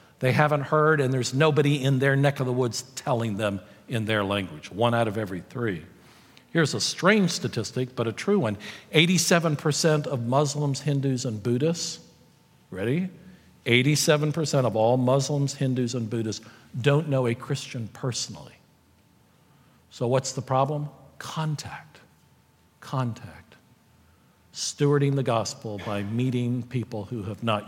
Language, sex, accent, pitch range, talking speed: English, male, American, 115-150 Hz, 140 wpm